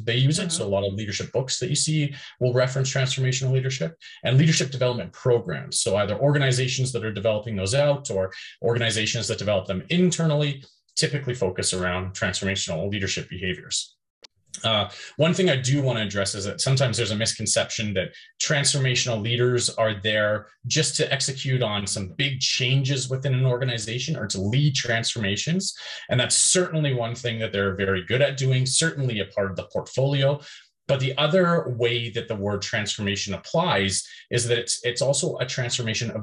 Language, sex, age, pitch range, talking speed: English, male, 30-49, 110-140 Hz, 175 wpm